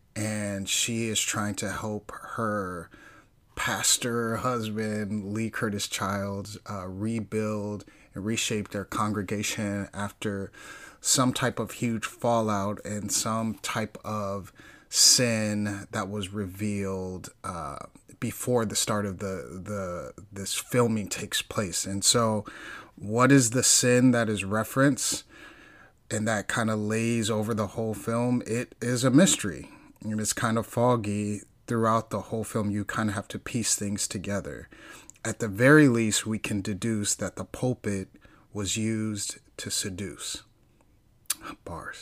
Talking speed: 140 wpm